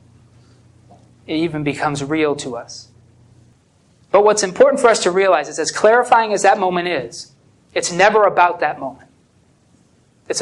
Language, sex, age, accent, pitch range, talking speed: English, male, 30-49, American, 150-205 Hz, 150 wpm